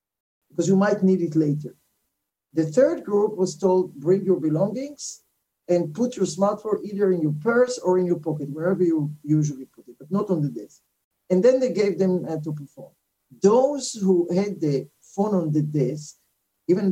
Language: English